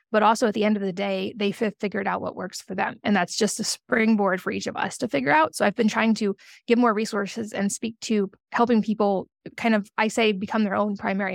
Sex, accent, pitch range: female, American, 200-225 Hz